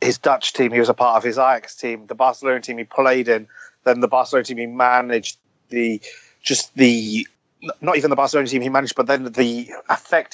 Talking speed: 215 wpm